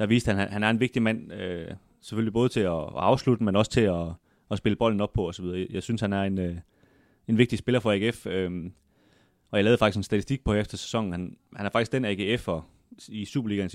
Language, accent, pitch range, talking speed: Danish, native, 95-115 Hz, 210 wpm